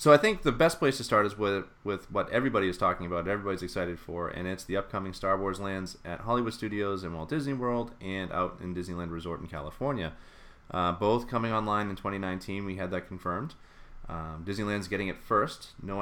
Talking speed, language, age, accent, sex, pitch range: 210 wpm, English, 30-49, American, male, 85-105 Hz